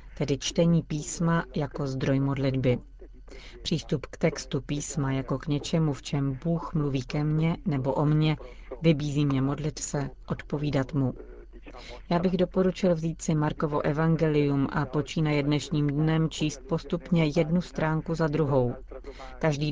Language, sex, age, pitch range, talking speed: Czech, female, 40-59, 140-160 Hz, 140 wpm